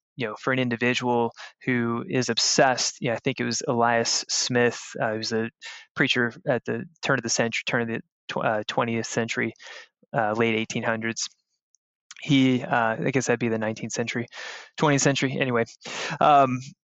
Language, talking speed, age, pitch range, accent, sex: English, 175 wpm, 20-39, 120-135 Hz, American, male